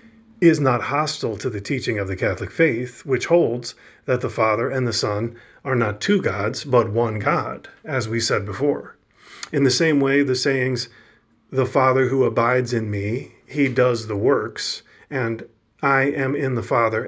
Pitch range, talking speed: 120-145 Hz, 180 wpm